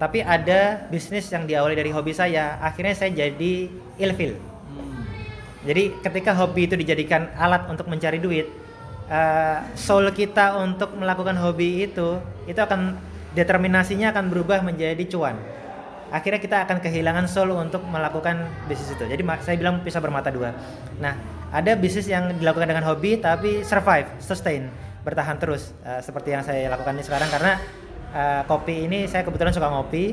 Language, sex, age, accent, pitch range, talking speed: Indonesian, male, 30-49, native, 140-185 Hz, 150 wpm